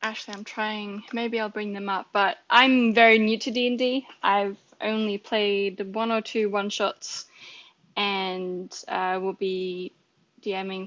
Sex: female